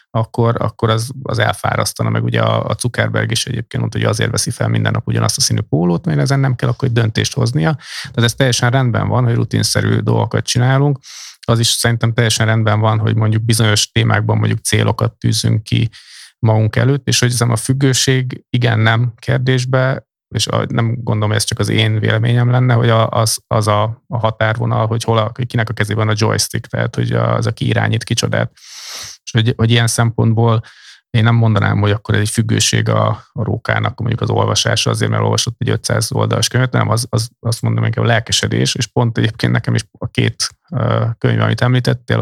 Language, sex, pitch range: Hungarian, male, 110-125 Hz